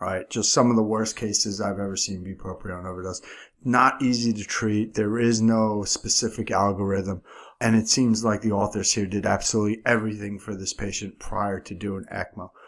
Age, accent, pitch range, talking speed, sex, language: 30-49, American, 100-115 Hz, 180 wpm, male, English